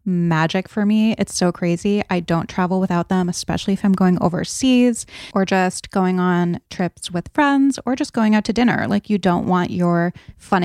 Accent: American